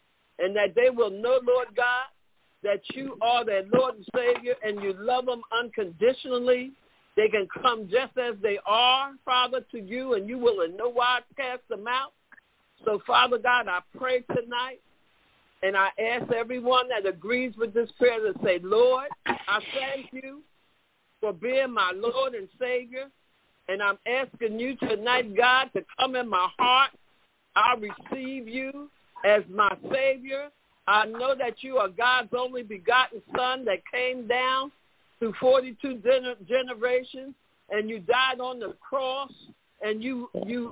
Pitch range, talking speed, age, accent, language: 230-265 Hz, 160 wpm, 60-79, American, English